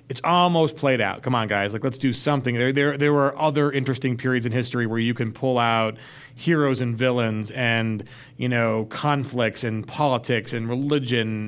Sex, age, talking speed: male, 30-49, 190 wpm